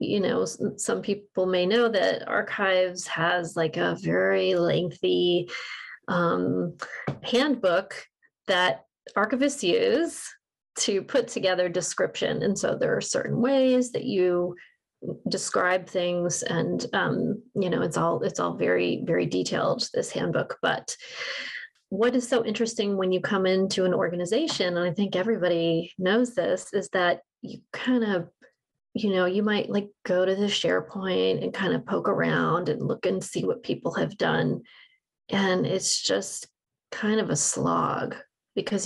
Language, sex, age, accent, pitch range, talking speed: English, female, 30-49, American, 180-250 Hz, 150 wpm